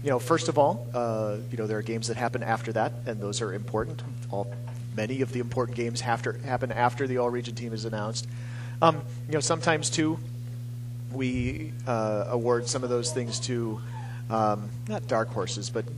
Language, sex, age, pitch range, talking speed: English, male, 40-59, 120-130 Hz, 195 wpm